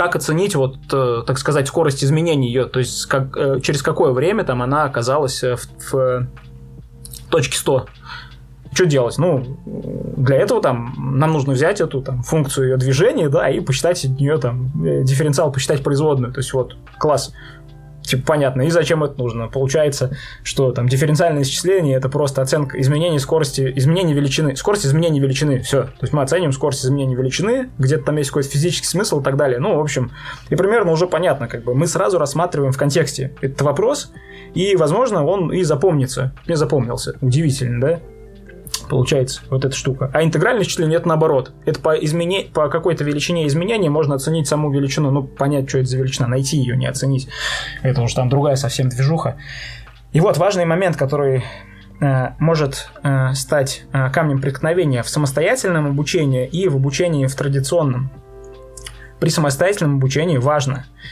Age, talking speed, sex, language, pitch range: 20-39, 165 wpm, male, Russian, 130-155 Hz